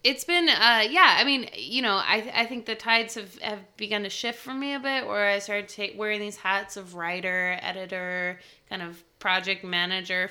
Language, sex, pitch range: English, female, 185-240 Hz